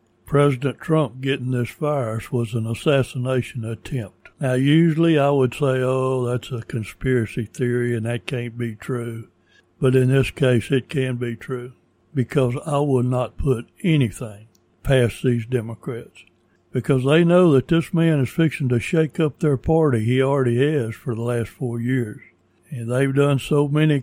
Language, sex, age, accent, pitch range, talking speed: English, male, 60-79, American, 120-140 Hz, 165 wpm